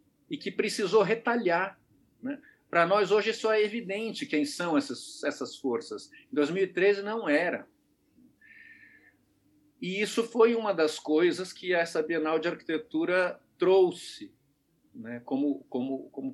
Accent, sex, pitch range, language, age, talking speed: Brazilian, male, 140-235 Hz, Portuguese, 50-69, 130 wpm